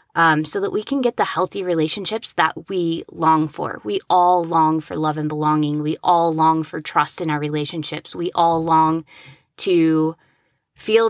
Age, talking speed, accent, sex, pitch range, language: 20-39, 180 wpm, American, female, 160-195 Hz, English